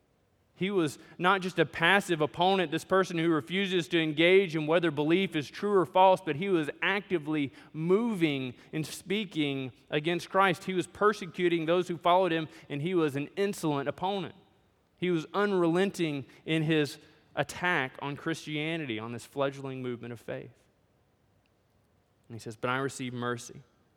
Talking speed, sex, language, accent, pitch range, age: 155 wpm, male, English, American, 120-160 Hz, 20-39